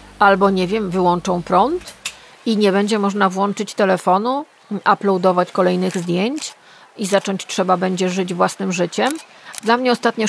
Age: 30-49